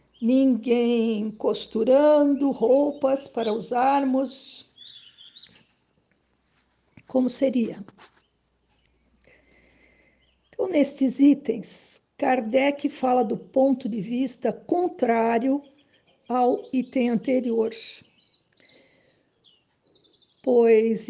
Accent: Brazilian